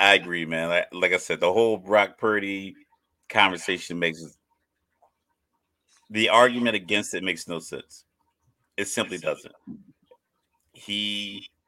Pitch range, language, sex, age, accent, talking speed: 85-115 Hz, English, male, 30-49, American, 120 wpm